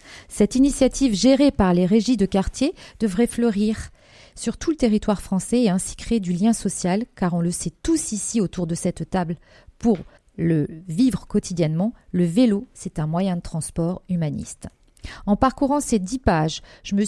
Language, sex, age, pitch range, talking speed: French, female, 40-59, 185-235 Hz, 175 wpm